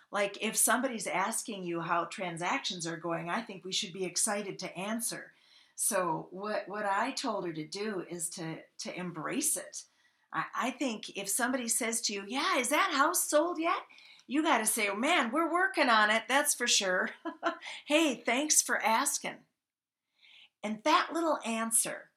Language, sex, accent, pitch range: English, female, American, 185-280 Hz